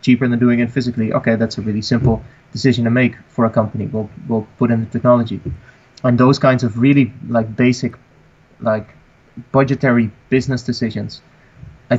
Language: English